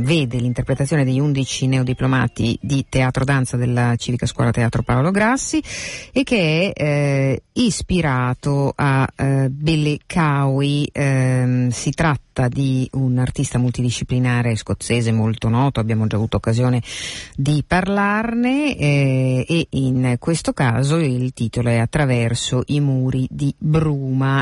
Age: 50-69